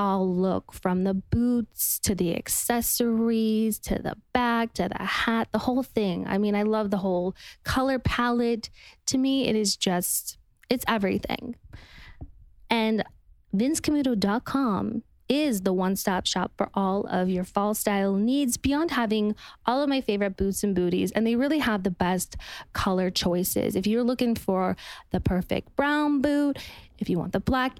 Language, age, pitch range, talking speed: English, 20-39, 195-255 Hz, 160 wpm